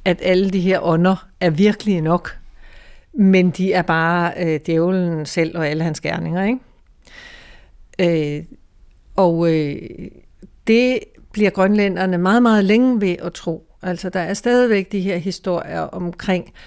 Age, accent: 60-79, native